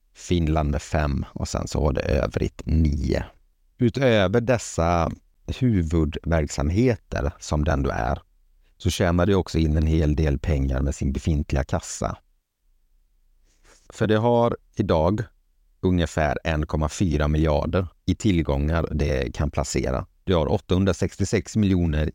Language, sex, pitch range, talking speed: Swedish, male, 75-90 Hz, 125 wpm